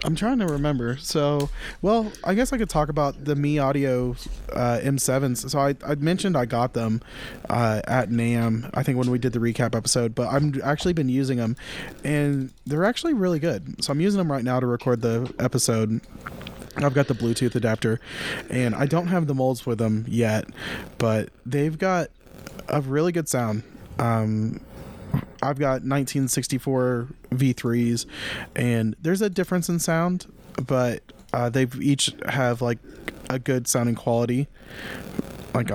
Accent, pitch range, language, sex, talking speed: American, 120-145 Hz, English, male, 165 wpm